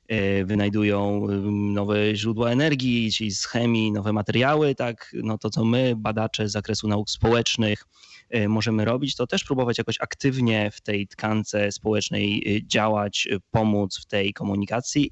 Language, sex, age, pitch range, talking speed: Polish, male, 20-39, 110-135 Hz, 140 wpm